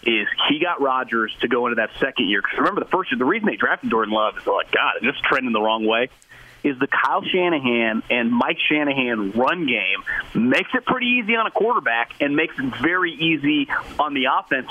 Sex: male